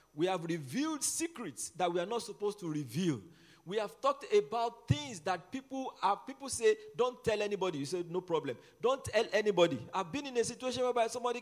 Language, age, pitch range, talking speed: English, 50-69, 180-250 Hz, 200 wpm